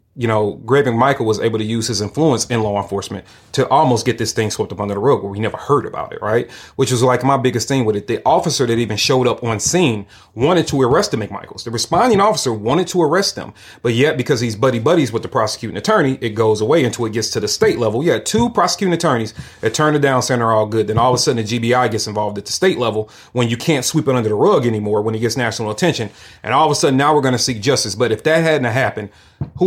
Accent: American